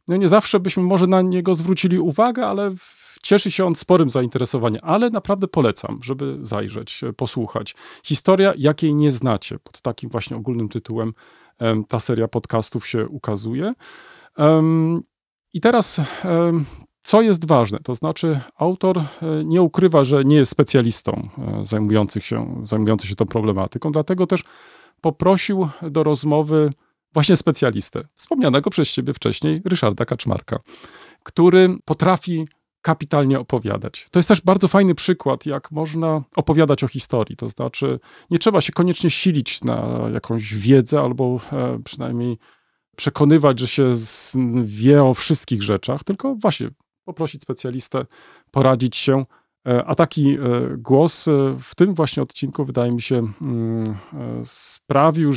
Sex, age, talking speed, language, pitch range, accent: male, 40-59, 130 wpm, Polish, 125-175 Hz, native